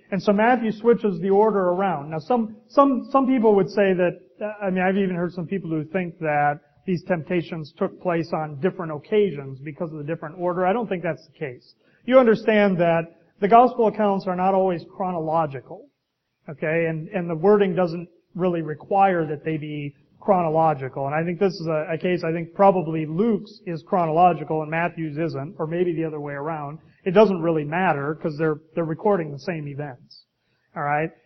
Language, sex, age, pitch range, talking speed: English, male, 30-49, 165-210 Hz, 190 wpm